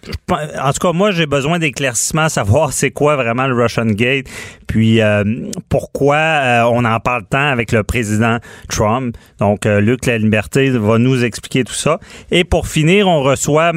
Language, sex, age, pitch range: French, male, 30-49, 110-130 Hz